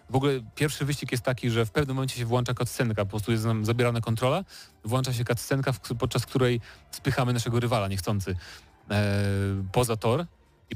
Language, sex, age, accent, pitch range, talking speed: Polish, male, 30-49, native, 115-135 Hz, 180 wpm